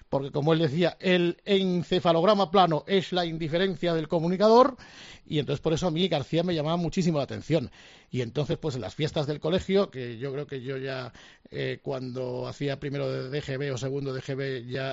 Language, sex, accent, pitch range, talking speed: Spanish, male, Spanish, 135-170 Hz, 195 wpm